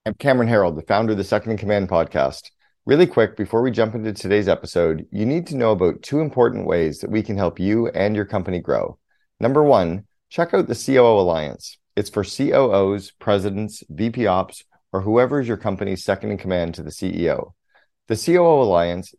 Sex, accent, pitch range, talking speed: male, American, 95-115 Hz, 195 wpm